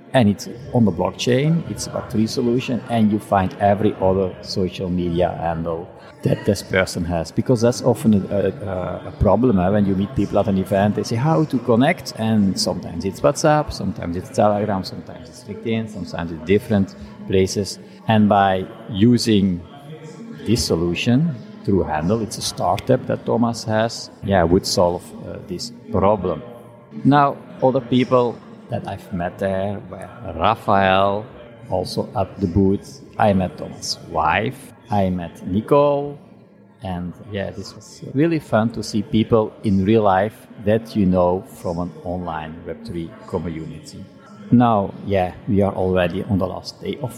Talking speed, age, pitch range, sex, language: 155 wpm, 50-69, 95-115 Hz, male, English